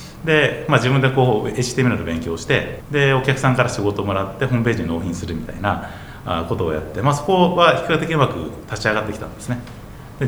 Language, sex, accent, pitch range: Japanese, male, native, 100-140 Hz